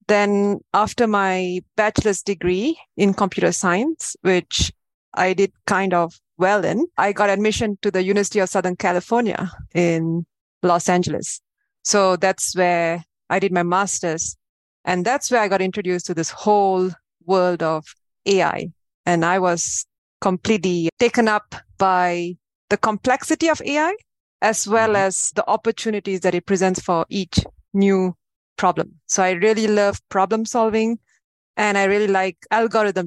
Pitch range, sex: 180-220 Hz, female